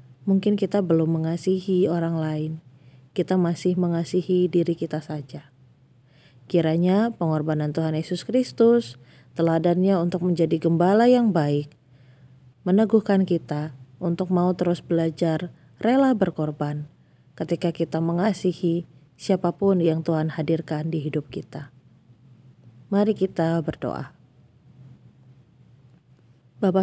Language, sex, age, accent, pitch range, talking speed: Indonesian, female, 30-49, native, 155-195 Hz, 100 wpm